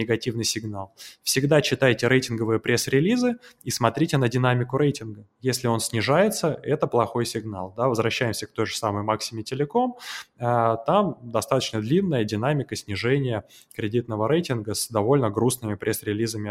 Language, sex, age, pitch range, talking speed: Russian, male, 20-39, 110-130 Hz, 125 wpm